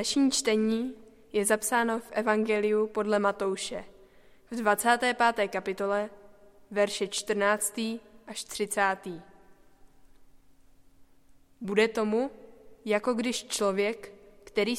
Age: 20-39